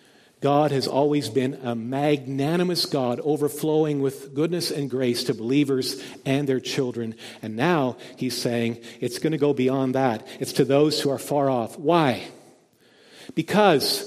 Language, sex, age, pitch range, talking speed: English, male, 50-69, 130-210 Hz, 155 wpm